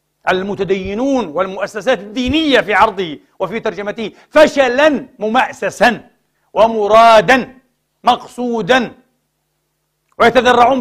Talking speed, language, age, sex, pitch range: 65 wpm, Arabic, 60-79, male, 165-230 Hz